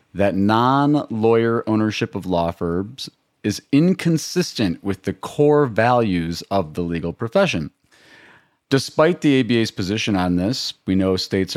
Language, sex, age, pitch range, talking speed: English, male, 30-49, 85-115 Hz, 130 wpm